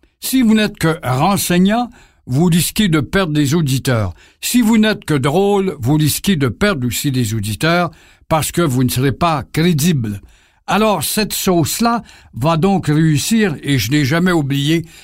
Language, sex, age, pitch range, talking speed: French, male, 60-79, 145-195 Hz, 165 wpm